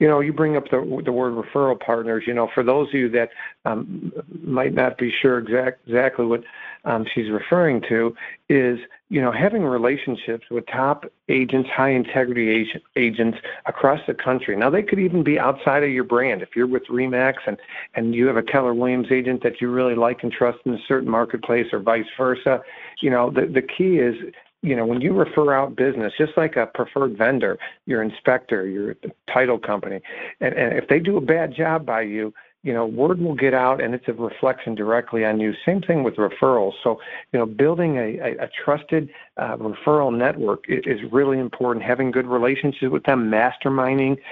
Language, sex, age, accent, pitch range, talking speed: English, male, 50-69, American, 120-140 Hz, 200 wpm